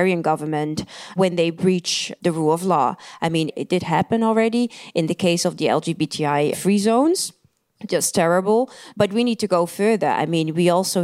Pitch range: 160-195 Hz